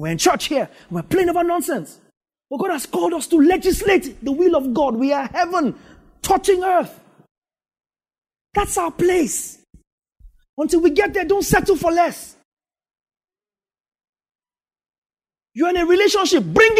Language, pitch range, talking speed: English, 250-355 Hz, 145 wpm